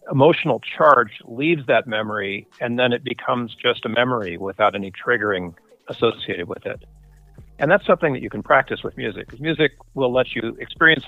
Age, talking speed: 50-69, 175 wpm